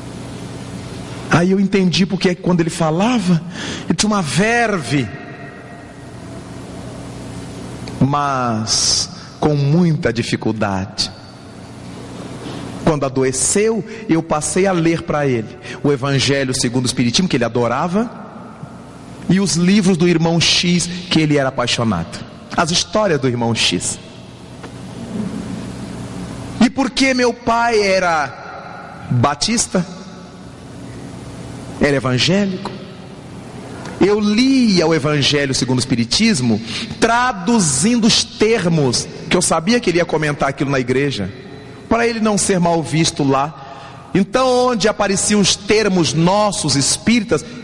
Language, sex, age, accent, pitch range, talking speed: Portuguese, male, 40-59, Brazilian, 130-195 Hz, 110 wpm